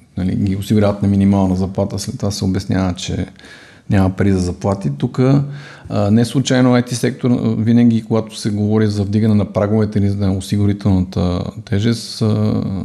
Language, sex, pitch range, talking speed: Bulgarian, male, 100-115 Hz, 155 wpm